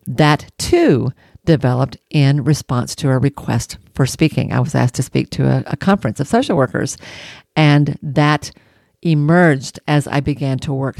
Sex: female